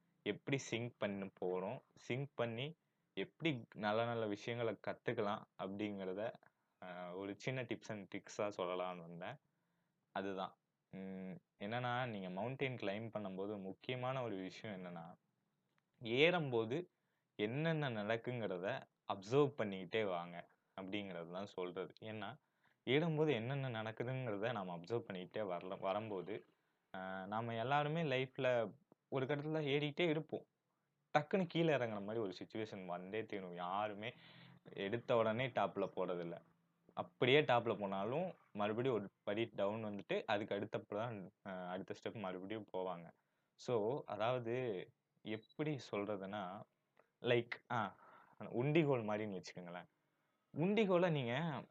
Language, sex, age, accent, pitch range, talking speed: Tamil, male, 20-39, native, 100-145 Hz, 105 wpm